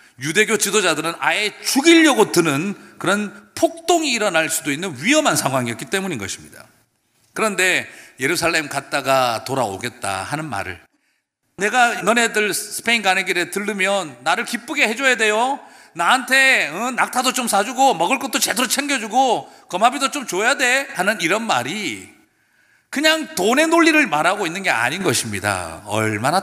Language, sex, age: Korean, male, 40-59